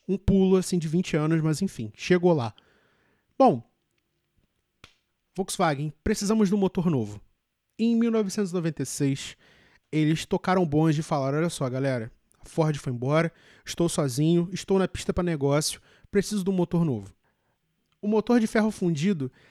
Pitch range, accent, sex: 155-190 Hz, Brazilian, male